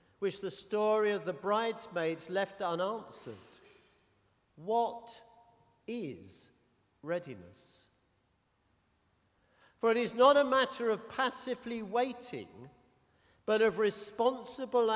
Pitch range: 180-235 Hz